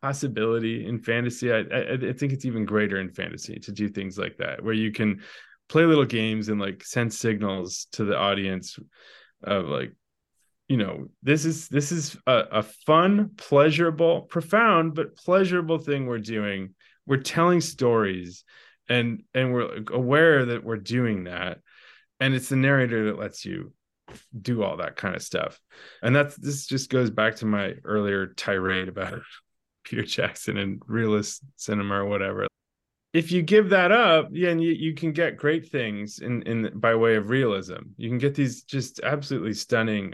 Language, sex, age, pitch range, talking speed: English, male, 20-39, 105-145 Hz, 175 wpm